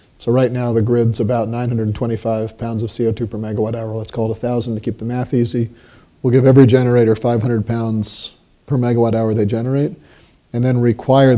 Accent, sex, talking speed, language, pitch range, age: American, male, 190 wpm, English, 110-125 Hz, 40-59